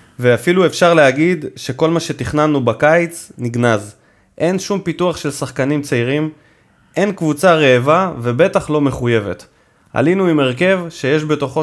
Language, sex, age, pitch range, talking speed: Hebrew, male, 20-39, 125-170 Hz, 130 wpm